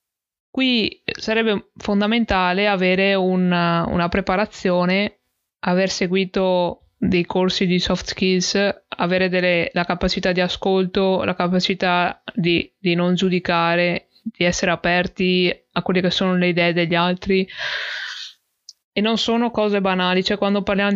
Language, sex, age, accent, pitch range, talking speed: Italian, female, 20-39, native, 170-195 Hz, 130 wpm